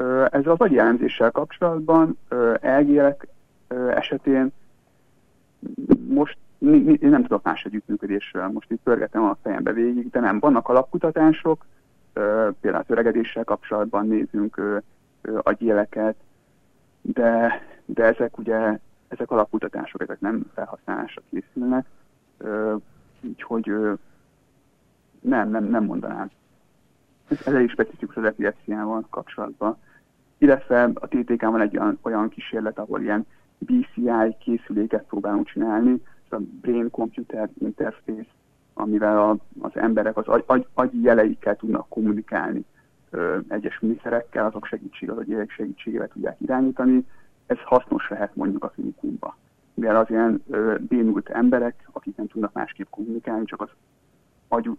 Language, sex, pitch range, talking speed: Hungarian, male, 110-140 Hz, 115 wpm